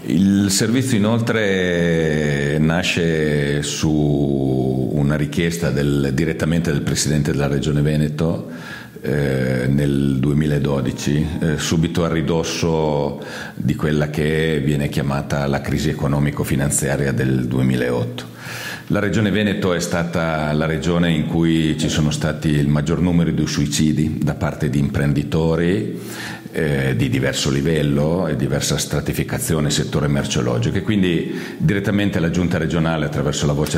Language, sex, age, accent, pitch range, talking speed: Italian, male, 50-69, native, 70-85 Hz, 125 wpm